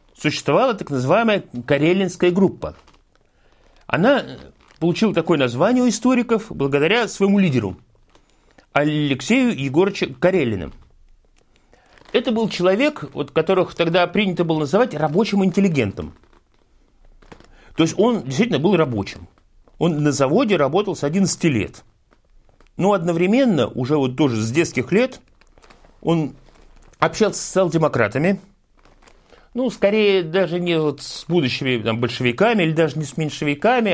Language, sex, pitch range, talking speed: Russian, male, 140-200 Hz, 115 wpm